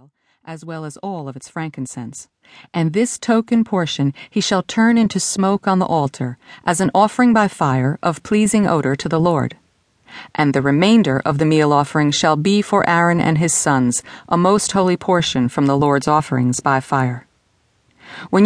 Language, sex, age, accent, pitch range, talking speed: English, female, 40-59, American, 140-190 Hz, 180 wpm